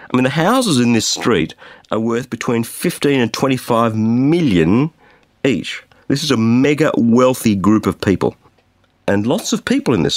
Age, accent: 50-69, Australian